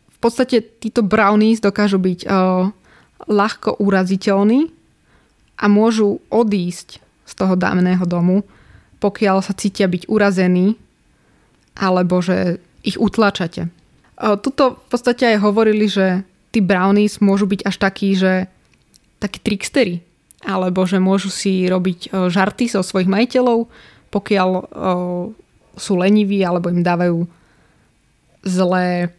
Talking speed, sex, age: 120 wpm, female, 20-39